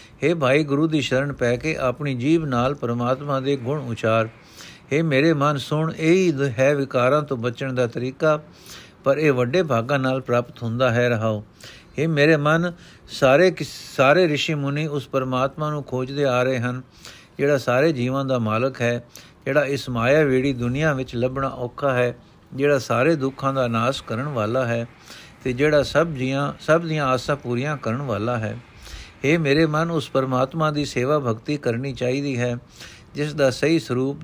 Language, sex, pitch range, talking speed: Punjabi, male, 120-150 Hz, 170 wpm